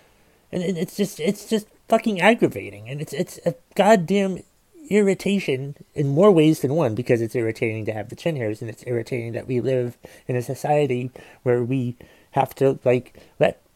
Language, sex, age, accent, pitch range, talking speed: English, male, 30-49, American, 120-175 Hz, 180 wpm